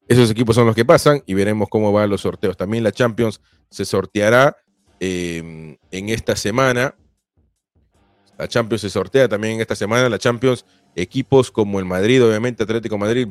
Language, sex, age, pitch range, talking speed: Spanish, male, 40-59, 95-115 Hz, 170 wpm